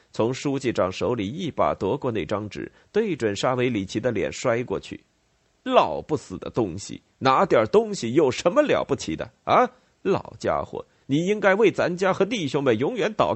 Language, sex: Chinese, male